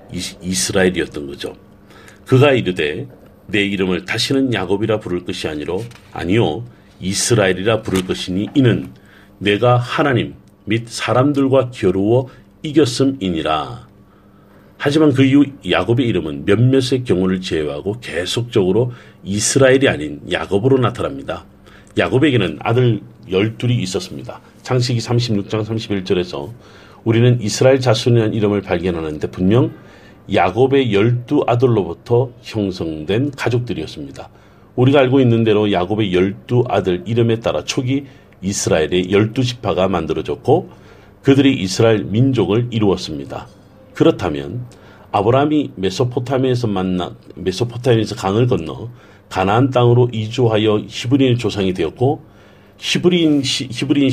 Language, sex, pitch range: Korean, male, 100-125 Hz